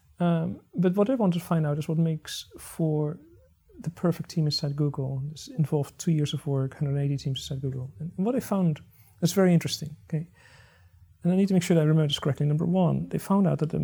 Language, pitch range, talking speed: English, 140-175 Hz, 230 wpm